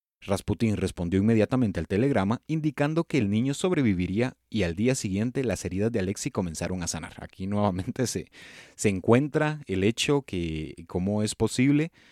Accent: Mexican